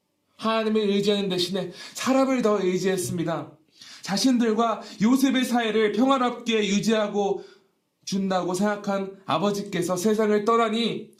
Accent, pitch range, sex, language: native, 175-215 Hz, male, Korean